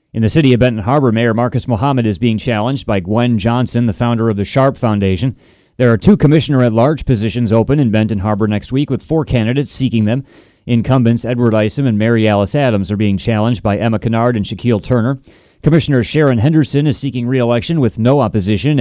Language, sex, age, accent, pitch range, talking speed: English, male, 30-49, American, 110-130 Hz, 200 wpm